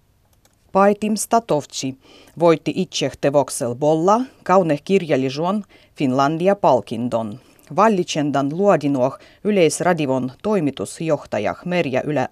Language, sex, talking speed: Finnish, female, 70 wpm